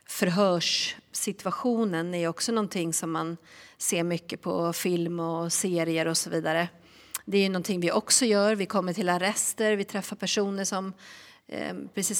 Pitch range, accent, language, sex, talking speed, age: 175-210 Hz, native, Swedish, female, 150 wpm, 40-59